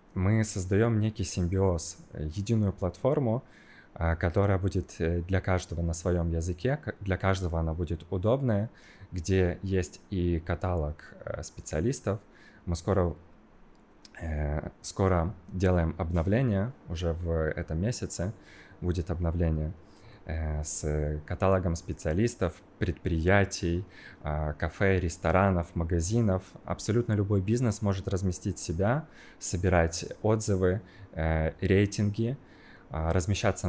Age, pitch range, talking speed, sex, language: 20-39, 85-105 Hz, 90 wpm, male, Russian